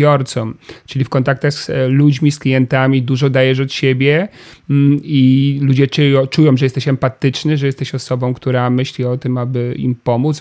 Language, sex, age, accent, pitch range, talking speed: Polish, male, 40-59, native, 130-155 Hz, 155 wpm